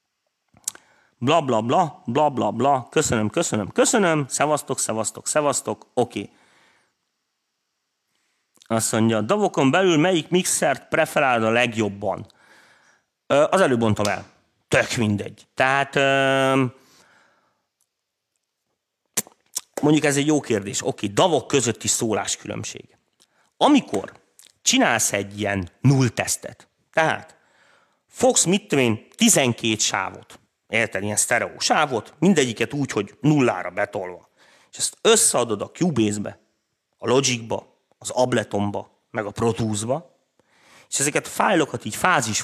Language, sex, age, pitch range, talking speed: Hungarian, male, 40-59, 105-140 Hz, 110 wpm